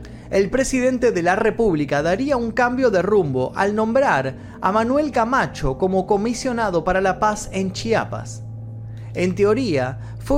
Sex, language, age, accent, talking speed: male, Spanish, 30-49, Argentinian, 145 wpm